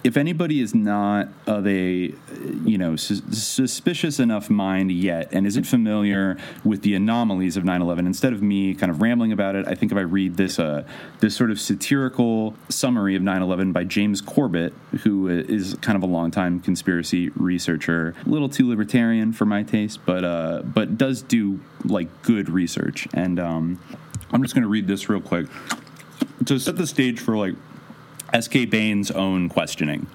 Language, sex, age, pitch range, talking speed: English, male, 30-49, 90-115 Hz, 180 wpm